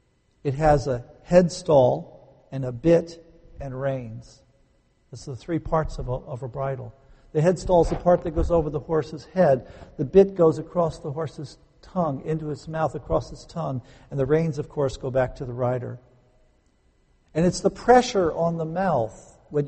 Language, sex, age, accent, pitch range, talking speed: English, male, 50-69, American, 130-180 Hz, 185 wpm